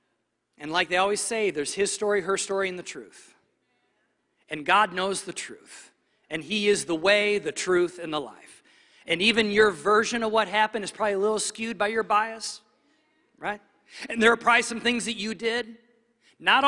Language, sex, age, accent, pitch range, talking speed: English, male, 40-59, American, 180-235 Hz, 195 wpm